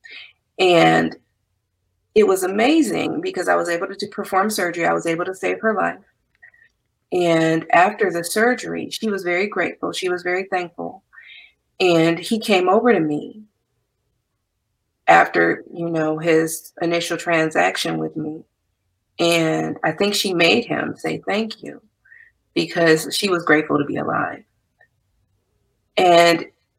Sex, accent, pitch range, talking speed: female, American, 160-240 Hz, 140 wpm